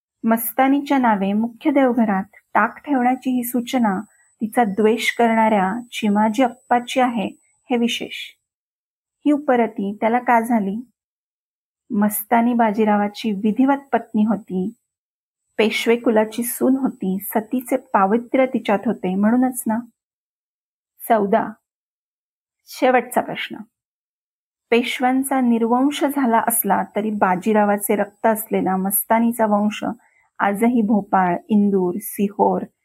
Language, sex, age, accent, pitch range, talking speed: Marathi, female, 30-49, native, 210-245 Hz, 100 wpm